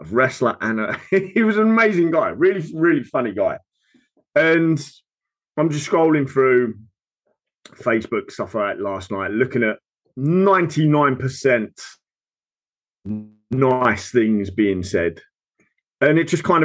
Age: 30-49